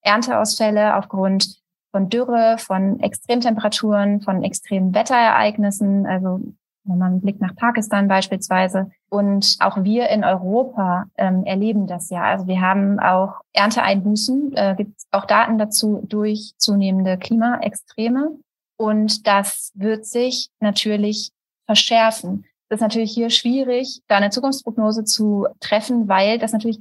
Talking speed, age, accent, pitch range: 130 wpm, 30-49, German, 195-230 Hz